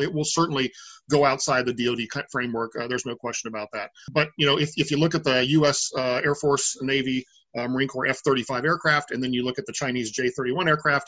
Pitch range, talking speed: 125-145 Hz, 225 wpm